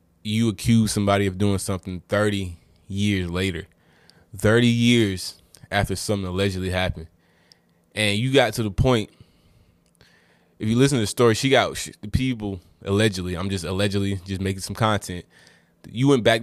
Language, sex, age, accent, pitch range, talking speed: English, male, 20-39, American, 90-105 Hz, 150 wpm